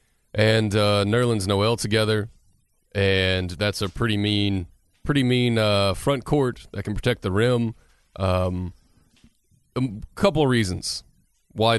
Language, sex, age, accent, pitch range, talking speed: English, male, 30-49, American, 95-120 Hz, 130 wpm